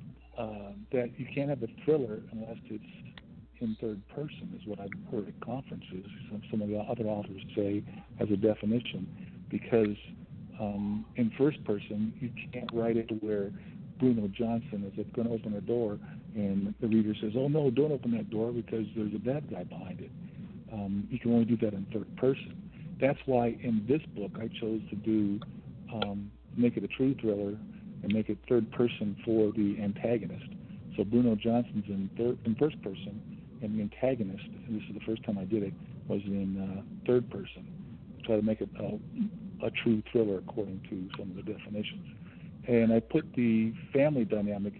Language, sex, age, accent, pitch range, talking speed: English, male, 50-69, American, 105-125 Hz, 180 wpm